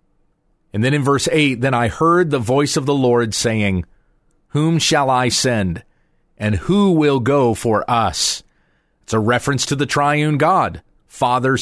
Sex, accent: male, American